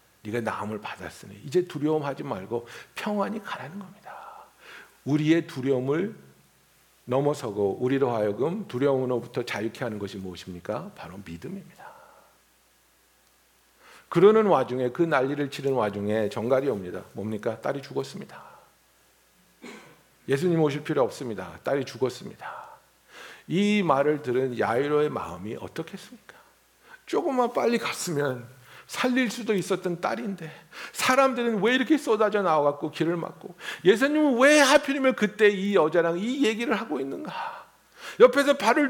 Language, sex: Korean, male